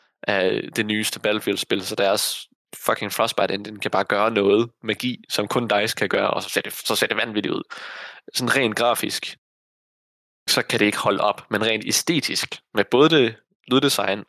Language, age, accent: Danish, 20-39, native